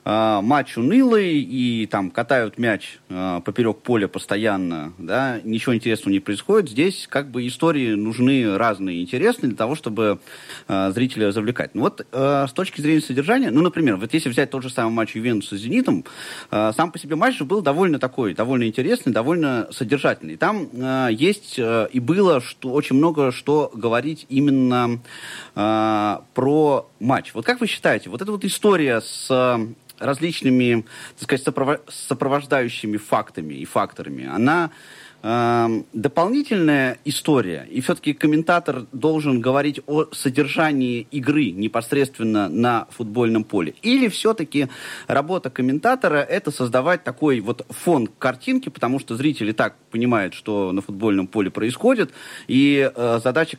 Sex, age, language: male, 30-49, Russian